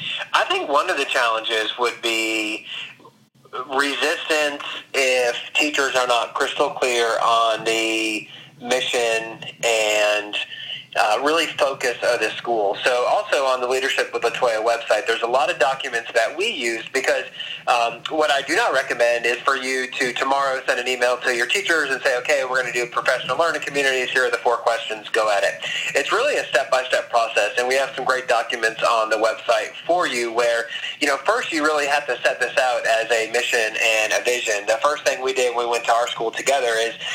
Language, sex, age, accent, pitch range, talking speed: English, male, 30-49, American, 115-135 Hz, 200 wpm